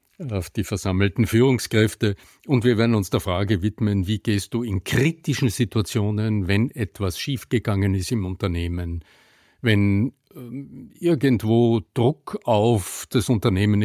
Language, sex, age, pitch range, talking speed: German, male, 50-69, 95-120 Hz, 130 wpm